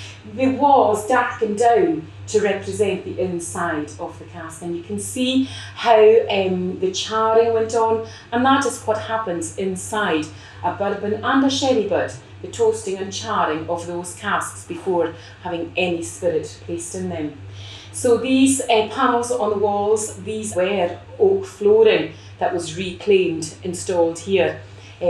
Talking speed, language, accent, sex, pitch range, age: 150 wpm, English, British, female, 170-245 Hz, 30-49